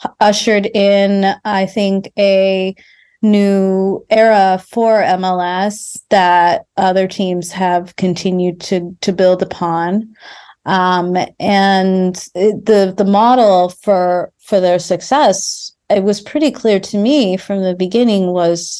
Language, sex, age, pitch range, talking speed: English, female, 30-49, 180-220 Hz, 120 wpm